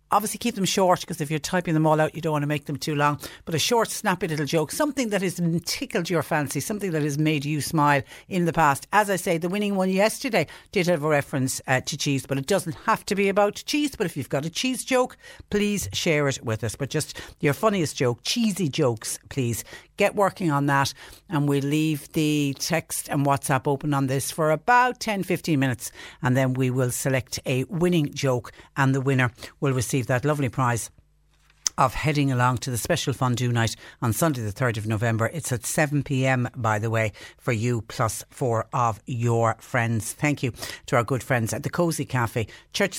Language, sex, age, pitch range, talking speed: English, female, 60-79, 125-175 Hz, 215 wpm